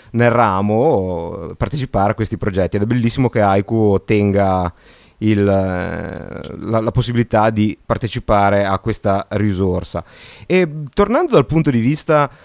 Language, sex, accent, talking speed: Italian, male, native, 125 wpm